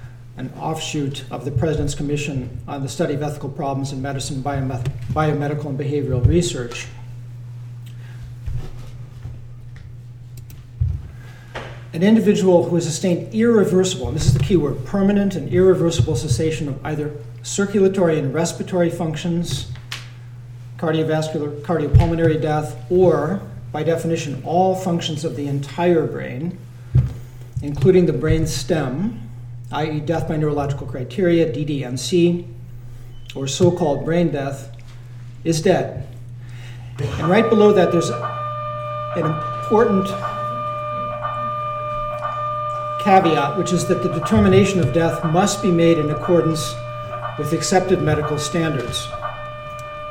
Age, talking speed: 40-59, 110 wpm